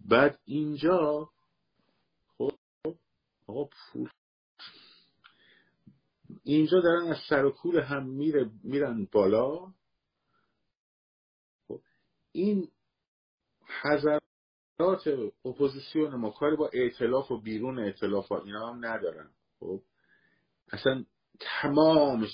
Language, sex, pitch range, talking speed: Persian, male, 110-160 Hz, 80 wpm